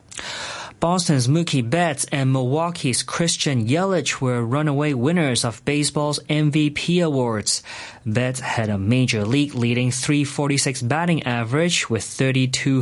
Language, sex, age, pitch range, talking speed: English, male, 30-49, 115-150 Hz, 115 wpm